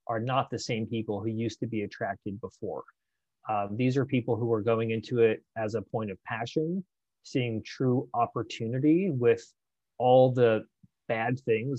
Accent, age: American, 30-49